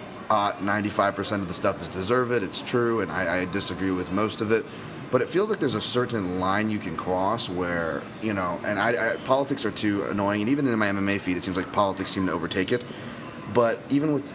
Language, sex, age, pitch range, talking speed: English, male, 30-49, 100-115 Hz, 225 wpm